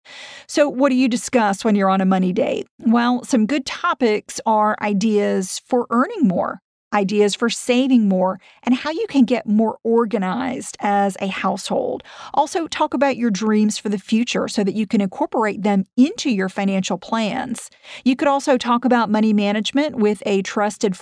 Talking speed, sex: 175 wpm, female